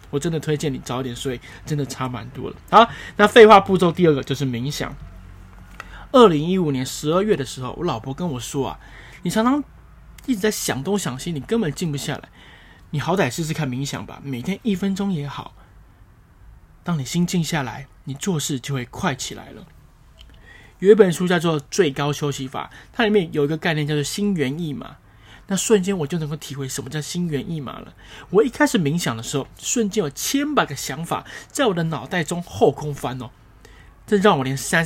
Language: Chinese